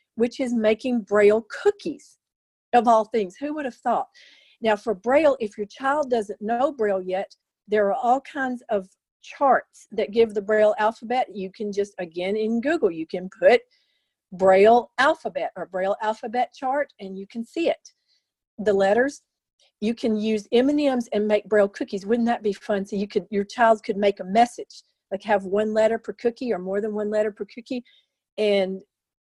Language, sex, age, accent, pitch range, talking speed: English, female, 40-59, American, 200-245 Hz, 185 wpm